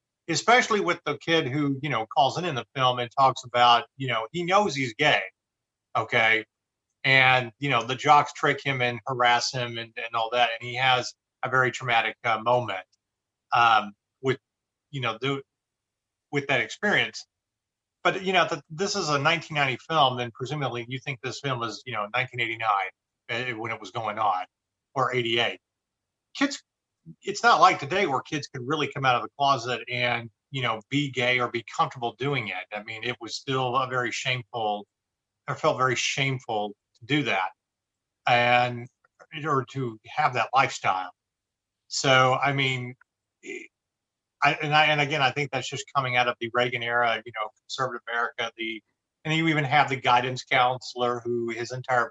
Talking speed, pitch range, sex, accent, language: 180 wpm, 115-140 Hz, male, American, English